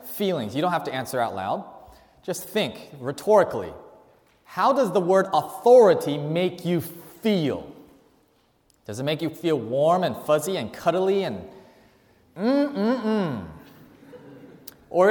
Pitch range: 150-205 Hz